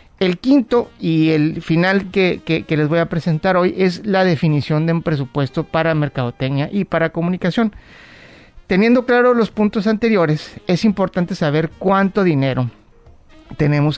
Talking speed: 150 wpm